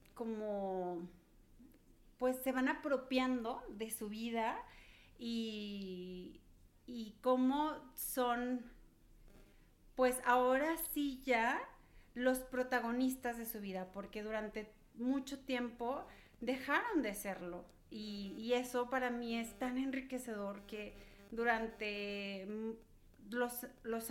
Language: Spanish